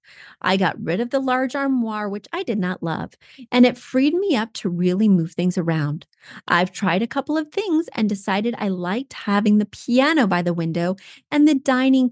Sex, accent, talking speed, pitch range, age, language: female, American, 205 wpm, 190-265 Hz, 30-49, English